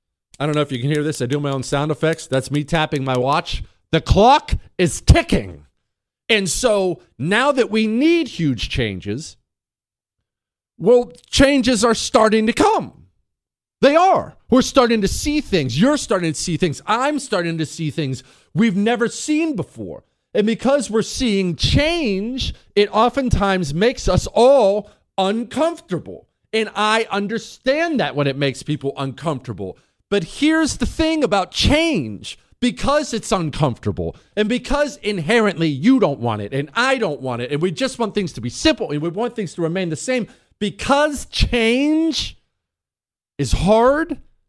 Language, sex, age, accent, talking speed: English, male, 40-59, American, 160 wpm